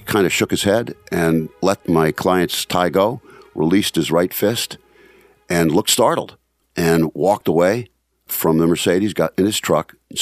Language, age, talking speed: English, 50-69, 170 wpm